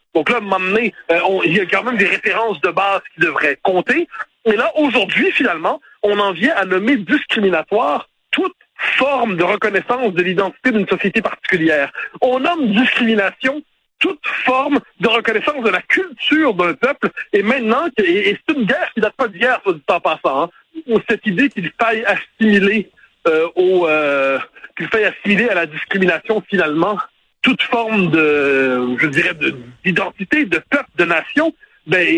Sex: male